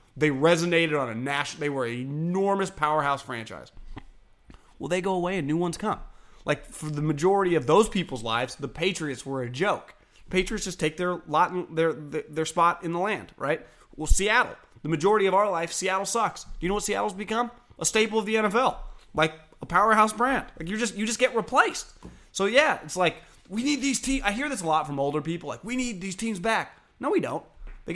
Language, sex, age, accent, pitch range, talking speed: English, male, 30-49, American, 135-195 Hz, 220 wpm